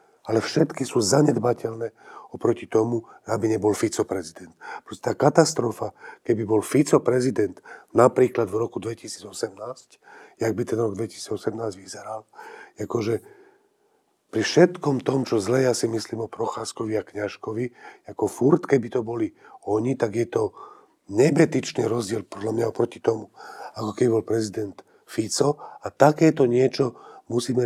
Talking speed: 140 wpm